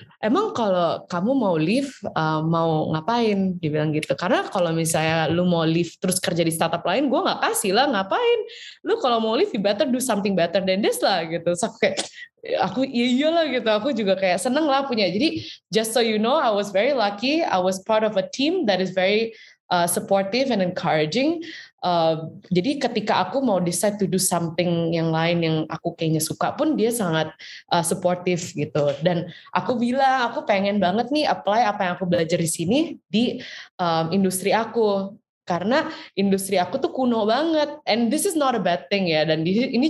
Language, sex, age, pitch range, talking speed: Indonesian, female, 20-39, 170-245 Hz, 195 wpm